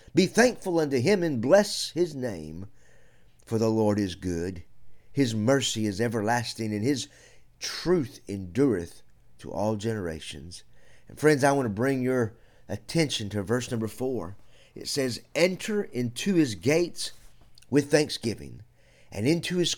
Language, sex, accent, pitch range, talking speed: English, male, American, 105-140 Hz, 145 wpm